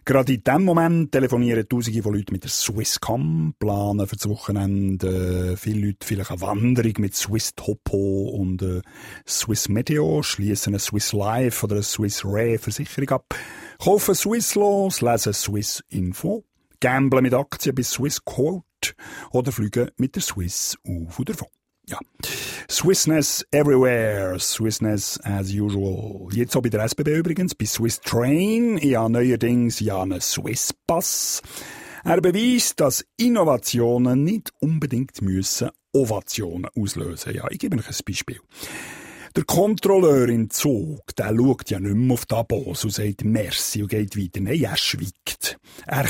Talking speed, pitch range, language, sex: 140 wpm, 105-135 Hz, German, male